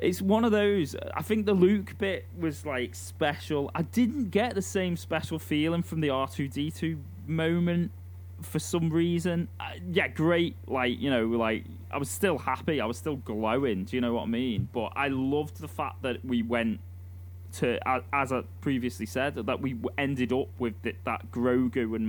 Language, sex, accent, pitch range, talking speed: English, male, British, 90-140 Hz, 180 wpm